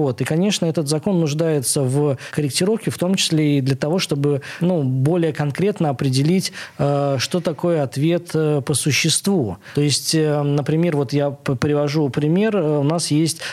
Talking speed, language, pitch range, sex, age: 145 wpm, Russian, 140-170 Hz, male, 20-39